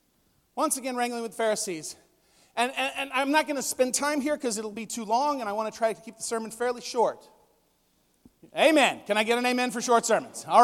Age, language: 40-59, English